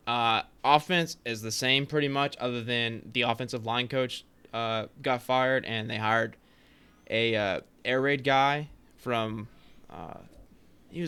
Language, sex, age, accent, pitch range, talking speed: English, male, 20-39, American, 115-135 Hz, 140 wpm